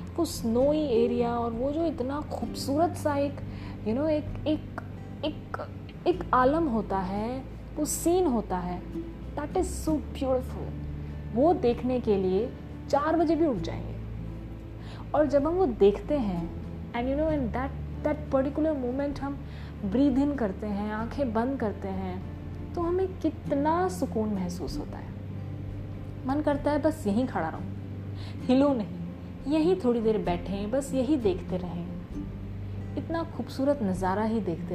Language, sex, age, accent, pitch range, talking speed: Hindi, female, 20-39, native, 175-290 Hz, 150 wpm